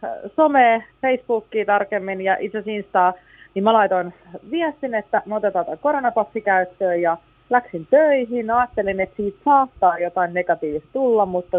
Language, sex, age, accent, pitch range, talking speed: Finnish, female, 30-49, native, 175-215 Hz, 130 wpm